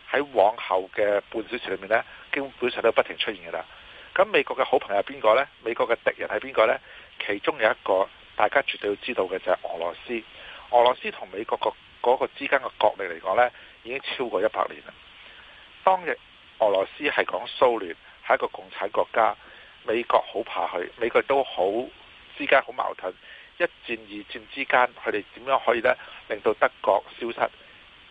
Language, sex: Chinese, male